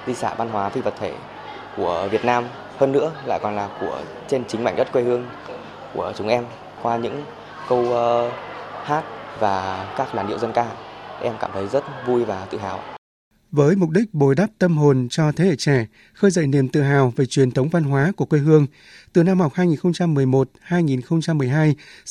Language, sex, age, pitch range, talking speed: Vietnamese, male, 20-39, 130-160 Hz, 195 wpm